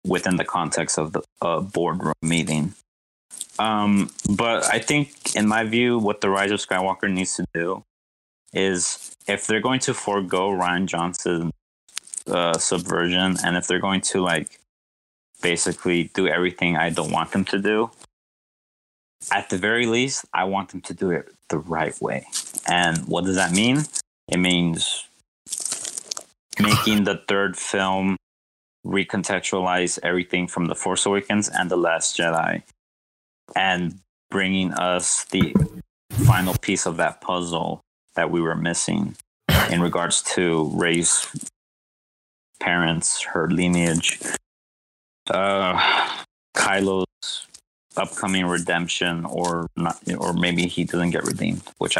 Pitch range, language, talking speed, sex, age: 85-95 Hz, English, 130 wpm, male, 20-39